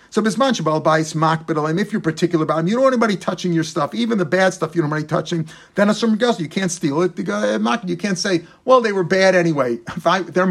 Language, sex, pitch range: English, male, 165-205 Hz